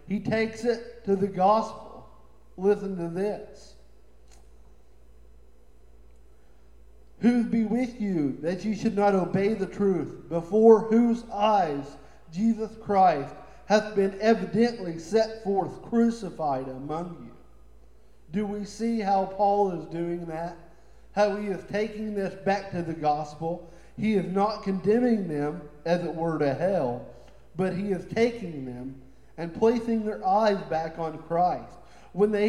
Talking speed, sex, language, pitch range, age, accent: 135 wpm, male, English, 150-210 Hz, 50-69, American